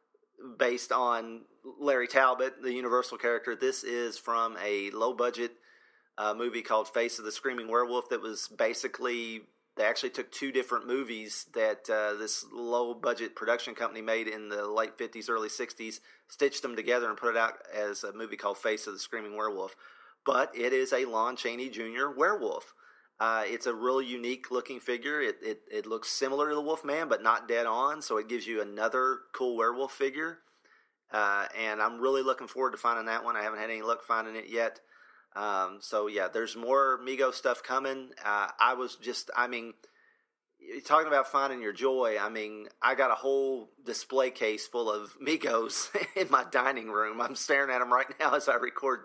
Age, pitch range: 30-49, 110-135 Hz